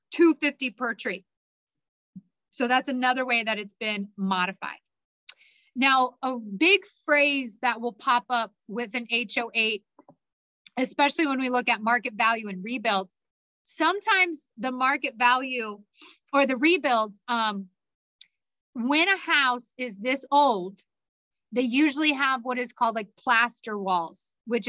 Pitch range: 220-270 Hz